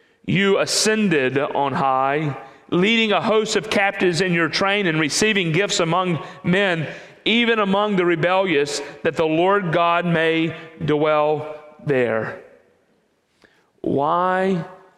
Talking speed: 115 wpm